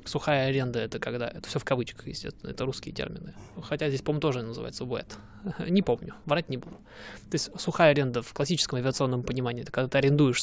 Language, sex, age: Russian, male, 20-39